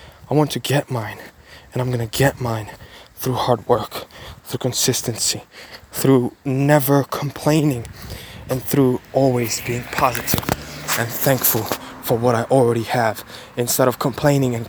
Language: English